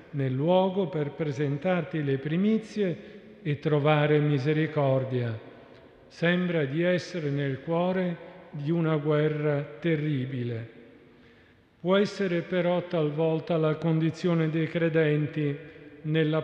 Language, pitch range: Italian, 145-175 Hz